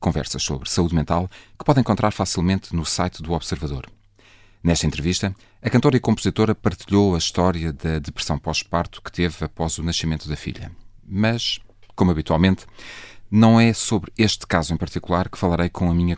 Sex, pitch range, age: male, 80-105 Hz, 40-59